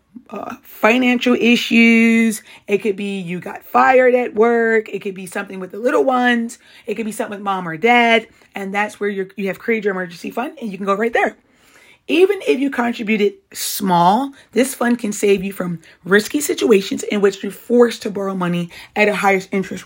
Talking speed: 200 wpm